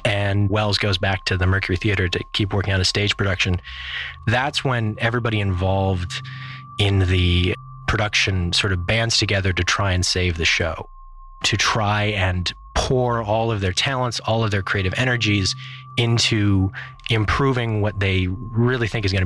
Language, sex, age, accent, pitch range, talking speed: English, male, 30-49, American, 95-120 Hz, 165 wpm